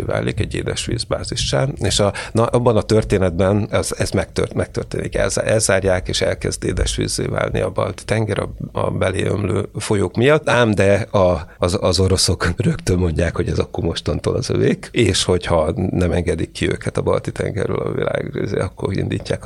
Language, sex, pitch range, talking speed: Hungarian, male, 95-115 Hz, 165 wpm